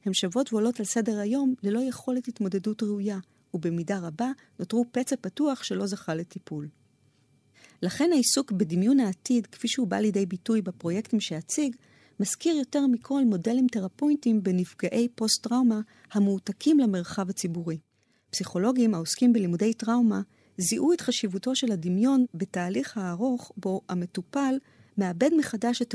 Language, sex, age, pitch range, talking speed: Hebrew, female, 40-59, 180-240 Hz, 125 wpm